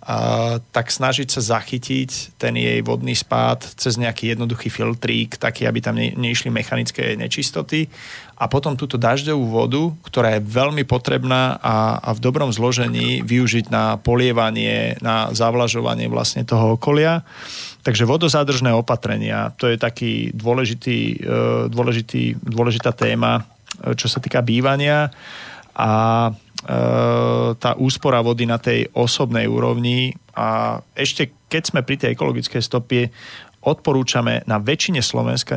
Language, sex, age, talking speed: Slovak, male, 30-49, 125 wpm